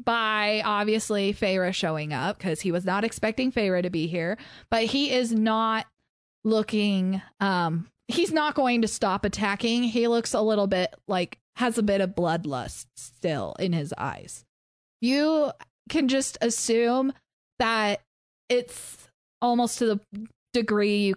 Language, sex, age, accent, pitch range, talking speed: English, female, 20-39, American, 190-250 Hz, 145 wpm